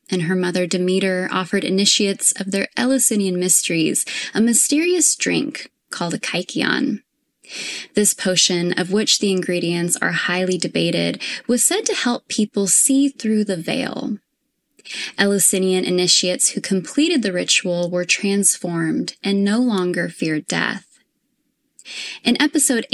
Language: English